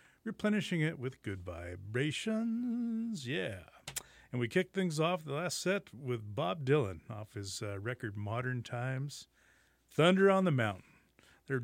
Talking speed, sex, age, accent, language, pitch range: 145 wpm, male, 40-59, American, English, 100-145 Hz